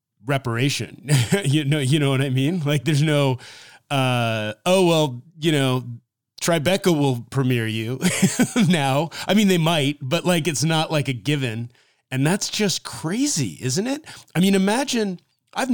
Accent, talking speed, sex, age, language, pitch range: American, 160 wpm, male, 30-49, English, 115-150 Hz